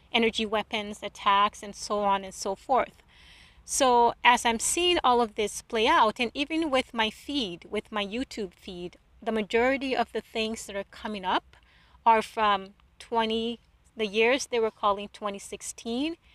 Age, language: 30-49, English